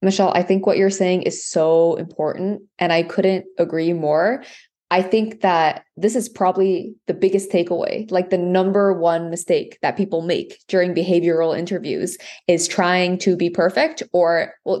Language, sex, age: English, female, 20-39